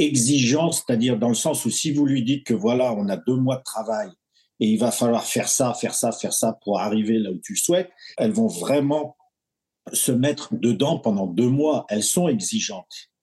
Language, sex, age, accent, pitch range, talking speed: French, male, 50-69, French, 120-170 Hz, 215 wpm